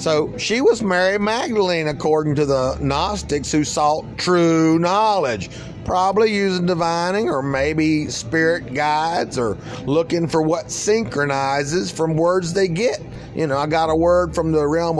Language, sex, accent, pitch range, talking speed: English, male, American, 135-180 Hz, 150 wpm